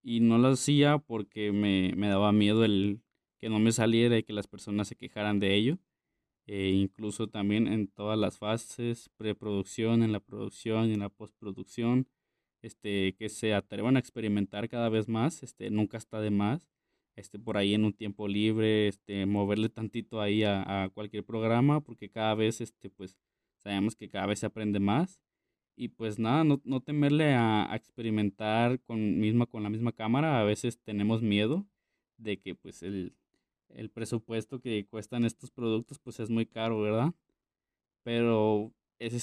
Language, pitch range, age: Spanish, 105-120 Hz, 20-39